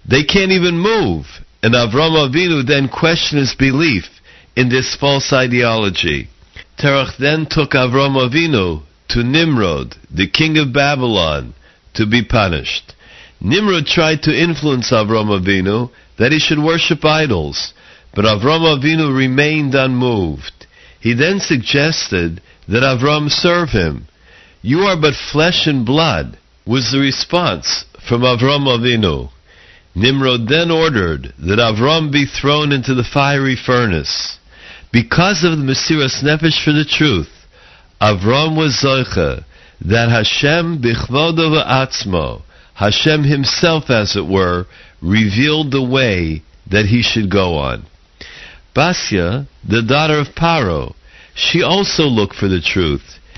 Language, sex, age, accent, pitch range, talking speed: English, male, 60-79, American, 105-155 Hz, 125 wpm